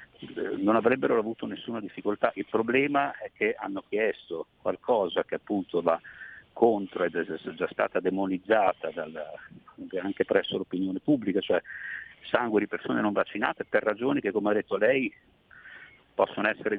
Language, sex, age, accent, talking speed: Italian, male, 50-69, native, 145 wpm